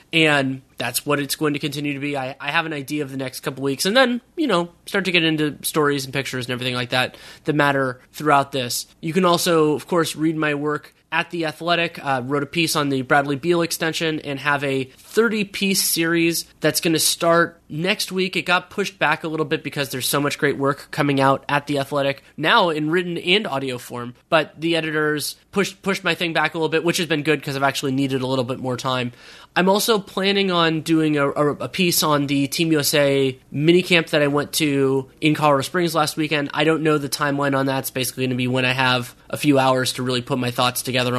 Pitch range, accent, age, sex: 135-165 Hz, American, 20-39, male